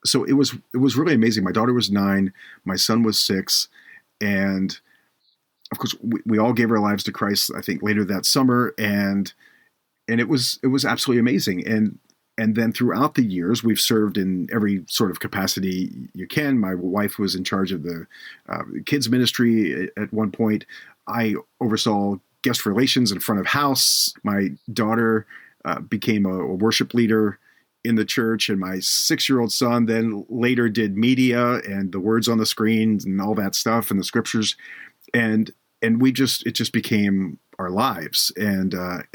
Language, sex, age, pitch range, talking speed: English, male, 40-59, 100-120 Hz, 180 wpm